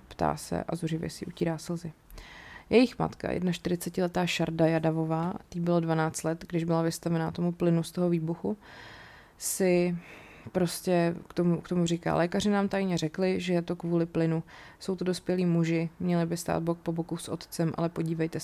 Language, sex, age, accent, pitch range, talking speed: Czech, female, 30-49, native, 165-180 Hz, 180 wpm